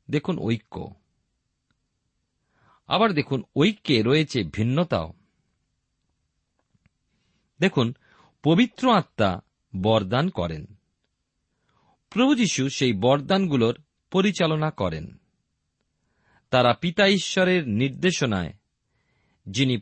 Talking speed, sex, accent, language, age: 65 wpm, male, native, Bengali, 40-59